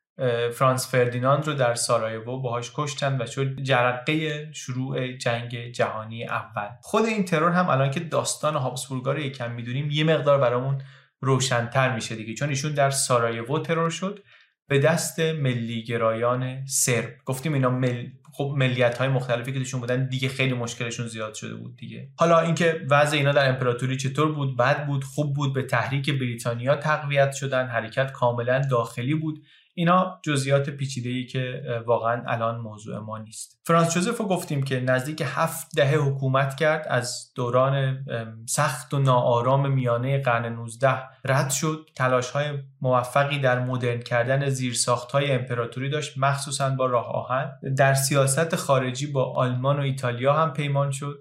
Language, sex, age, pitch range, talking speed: Persian, male, 20-39, 120-145 Hz, 150 wpm